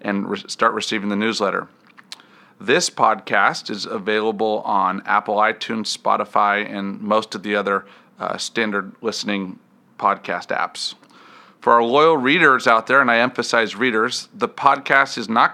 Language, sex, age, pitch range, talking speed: English, male, 40-59, 105-125 Hz, 145 wpm